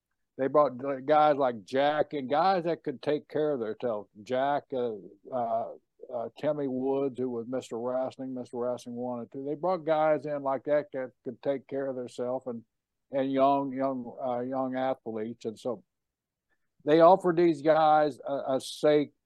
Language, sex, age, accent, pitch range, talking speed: English, male, 60-79, American, 125-150 Hz, 170 wpm